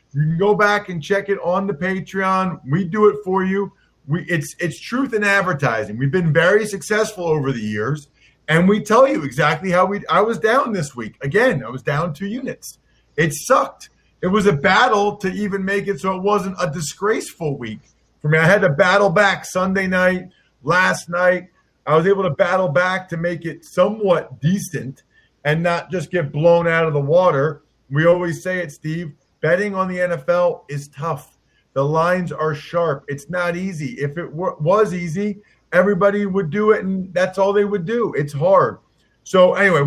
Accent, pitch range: American, 150-195 Hz